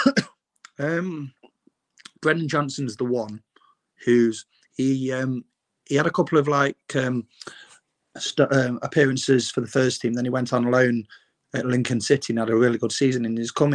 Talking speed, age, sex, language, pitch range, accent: 170 wpm, 30-49, male, English, 120-135 Hz, British